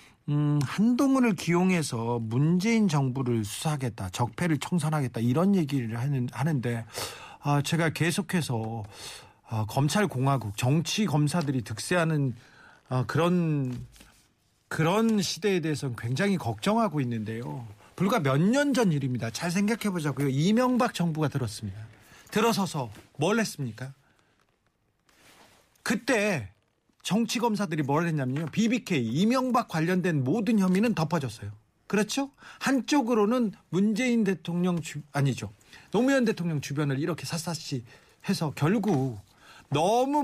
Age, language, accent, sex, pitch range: 40-59, Korean, native, male, 125-205 Hz